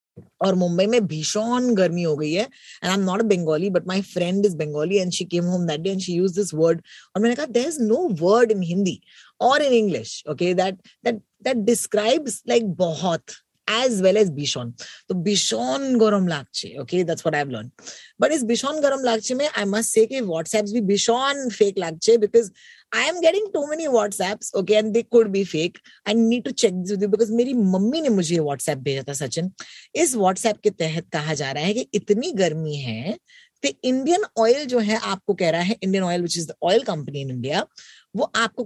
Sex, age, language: female, 20-39, Hindi